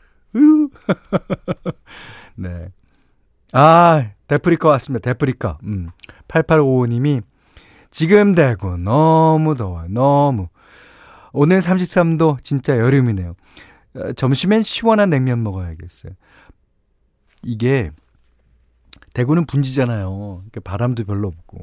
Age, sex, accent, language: 40-59, male, native, Korean